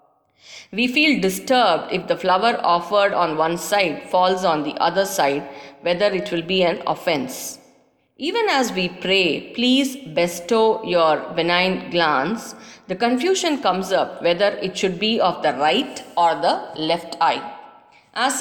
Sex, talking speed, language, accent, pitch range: female, 150 wpm, English, Indian, 180-245 Hz